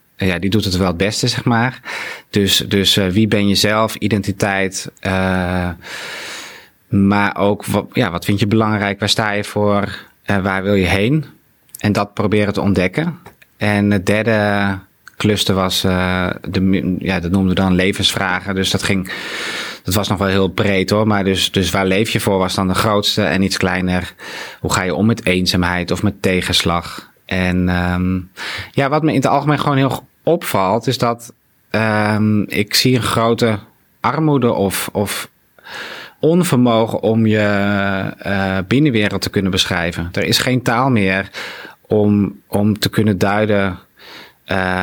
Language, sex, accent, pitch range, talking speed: Dutch, male, Dutch, 95-110 Hz, 165 wpm